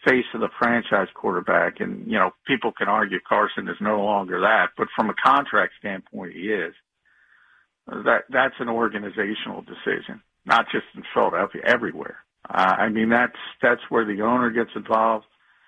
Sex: male